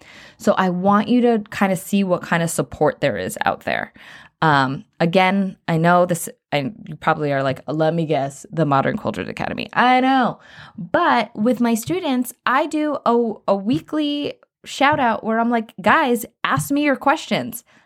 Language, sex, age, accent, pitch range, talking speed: English, female, 20-39, American, 165-240 Hz, 180 wpm